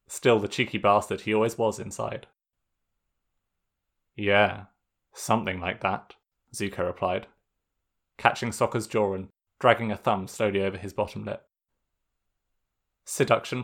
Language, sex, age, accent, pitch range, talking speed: English, male, 20-39, British, 95-120 Hz, 120 wpm